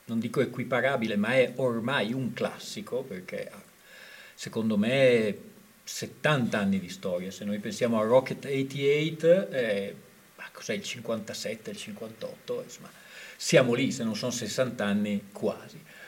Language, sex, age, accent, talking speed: Italian, male, 40-59, native, 140 wpm